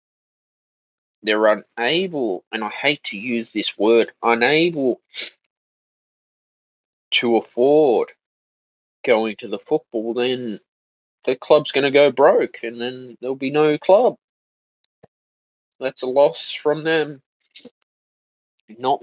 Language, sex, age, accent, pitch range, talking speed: English, male, 20-39, Australian, 115-160 Hz, 110 wpm